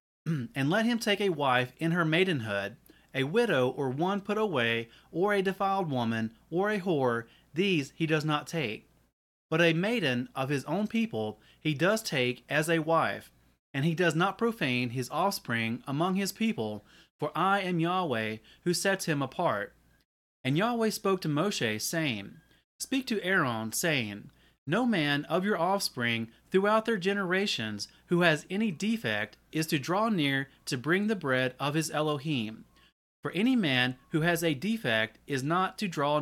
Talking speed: 170 wpm